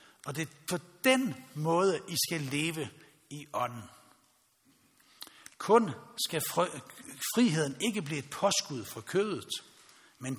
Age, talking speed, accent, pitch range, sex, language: 60-79, 120 wpm, native, 130-180 Hz, male, Danish